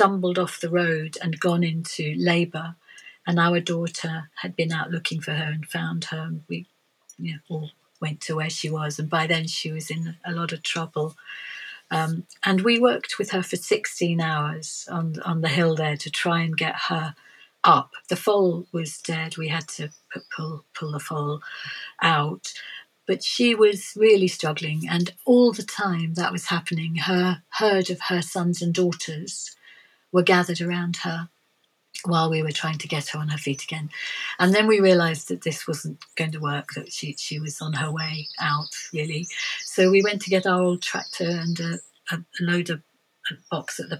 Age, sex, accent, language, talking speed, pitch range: 50-69, female, British, English, 195 wpm, 160-180 Hz